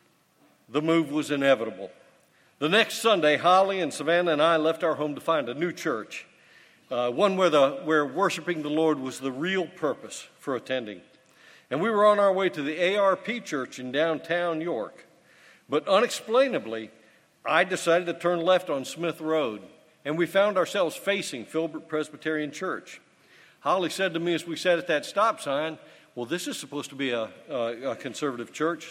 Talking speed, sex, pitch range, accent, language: 180 wpm, male, 145-190 Hz, American, English